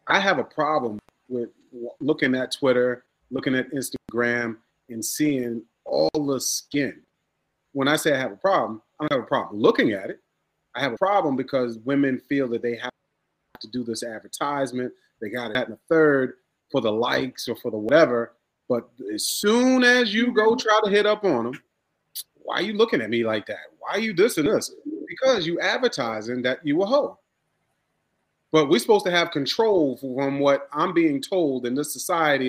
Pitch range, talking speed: 125-180 Hz, 195 wpm